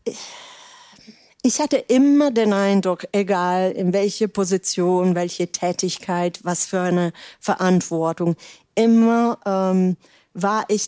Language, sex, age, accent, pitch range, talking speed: German, female, 40-59, German, 180-210 Hz, 105 wpm